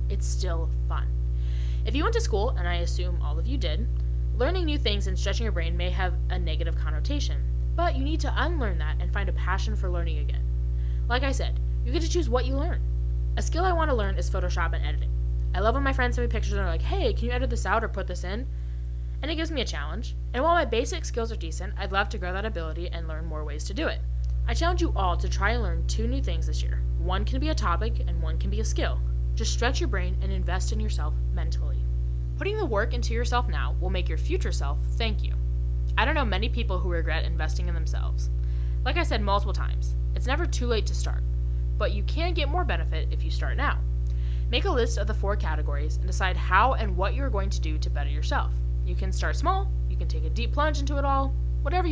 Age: 20-39